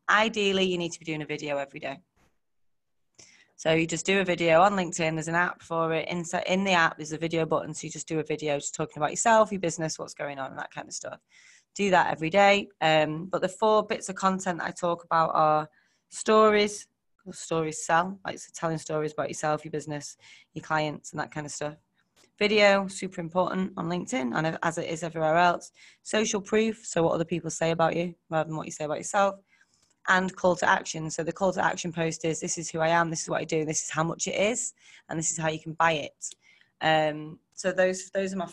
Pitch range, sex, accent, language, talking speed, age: 155-180 Hz, female, British, English, 235 wpm, 20-39